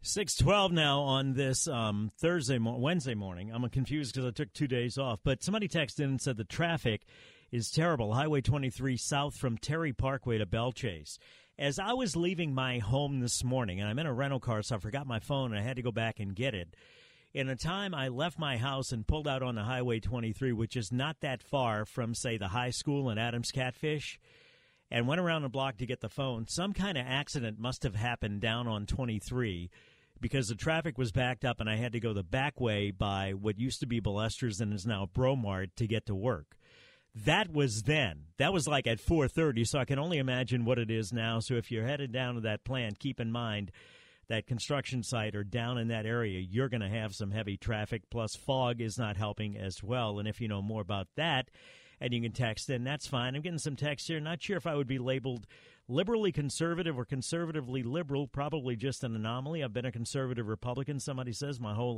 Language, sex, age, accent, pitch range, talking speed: English, male, 50-69, American, 115-140 Hz, 225 wpm